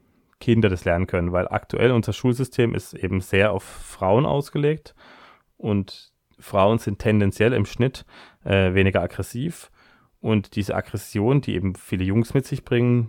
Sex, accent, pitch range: male, German, 95-115 Hz